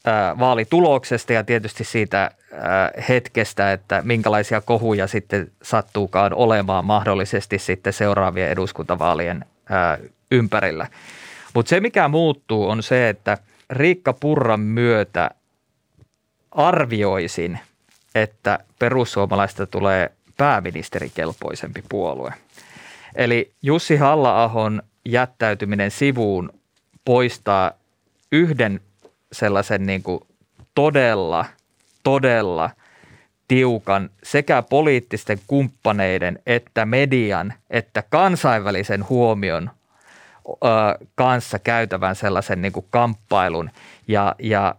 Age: 30-49